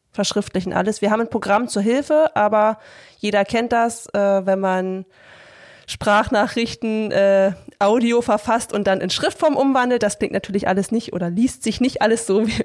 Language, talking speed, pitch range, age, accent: German, 170 wpm, 190-225 Hz, 20-39, German